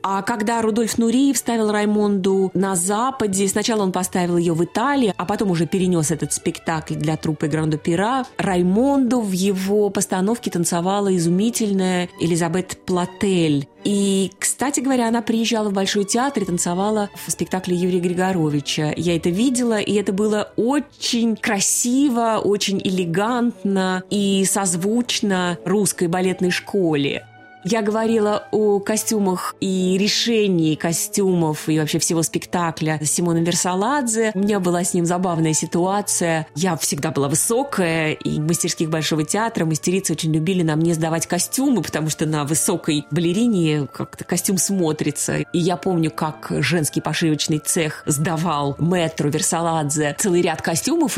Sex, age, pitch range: female, 20-39, 160-210 Hz